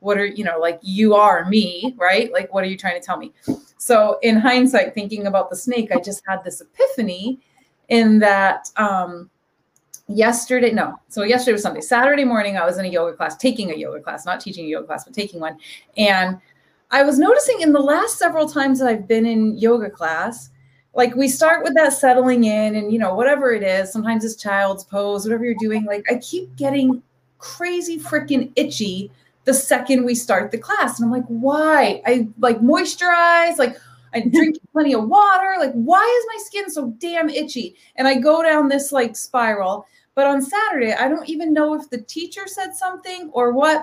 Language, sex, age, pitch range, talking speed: English, female, 30-49, 215-295 Hz, 205 wpm